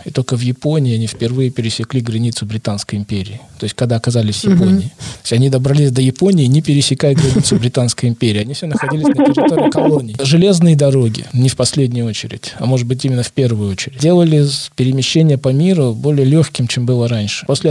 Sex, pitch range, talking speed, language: male, 120-150 Hz, 190 wpm, Russian